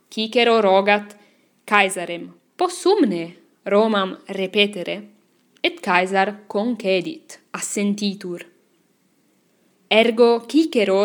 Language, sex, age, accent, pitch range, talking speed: English, female, 10-29, Italian, 195-230 Hz, 65 wpm